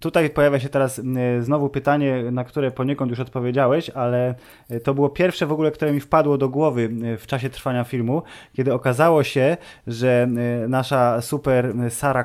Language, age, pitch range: Polish, 20-39, 115-135 Hz